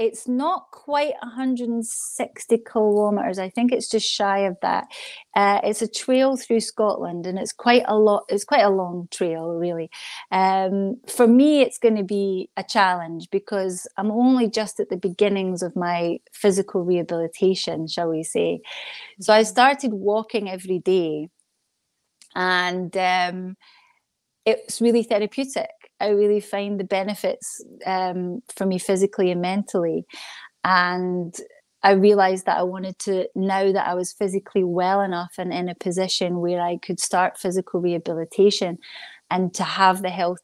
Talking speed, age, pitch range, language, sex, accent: 150 wpm, 30-49, 180-215 Hz, English, female, British